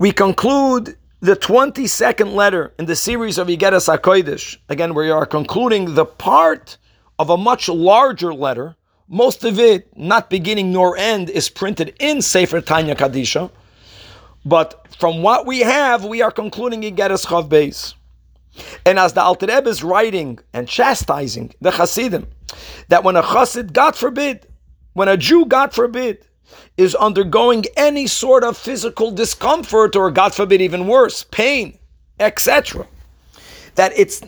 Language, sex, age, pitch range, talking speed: English, male, 50-69, 175-230 Hz, 145 wpm